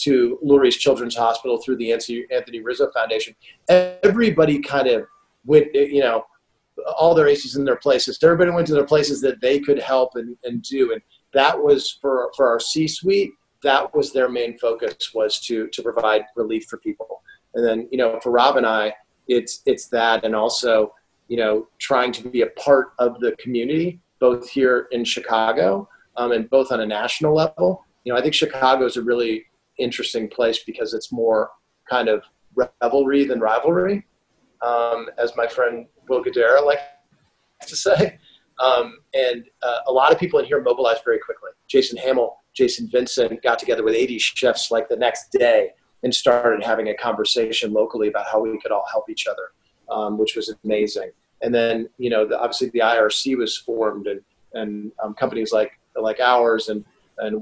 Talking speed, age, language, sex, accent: 185 wpm, 40-59, English, male, American